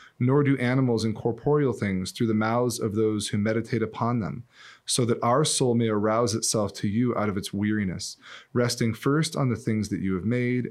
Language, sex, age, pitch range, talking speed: English, male, 20-39, 105-125 Hz, 205 wpm